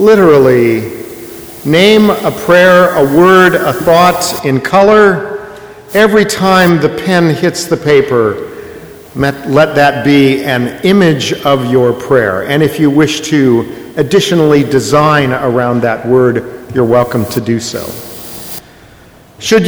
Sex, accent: male, American